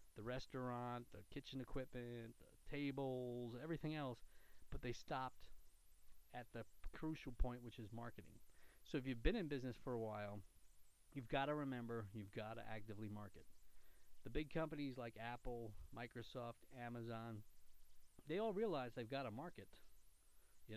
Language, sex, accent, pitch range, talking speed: English, male, American, 110-135 Hz, 150 wpm